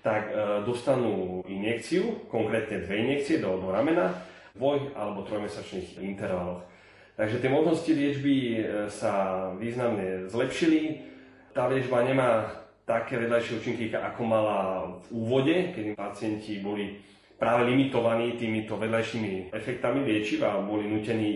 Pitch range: 95-115 Hz